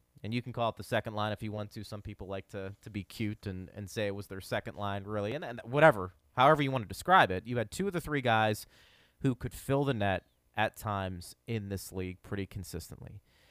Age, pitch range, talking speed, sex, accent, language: 30-49, 105-170 Hz, 250 wpm, male, American, English